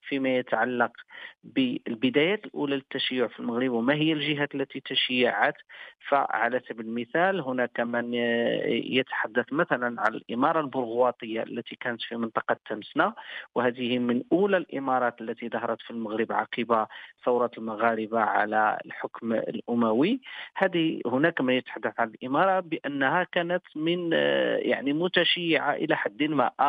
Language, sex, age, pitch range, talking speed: Arabic, male, 40-59, 120-160 Hz, 125 wpm